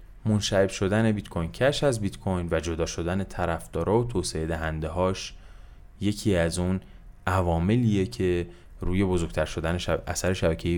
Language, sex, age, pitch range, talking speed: Persian, male, 30-49, 80-105 Hz, 140 wpm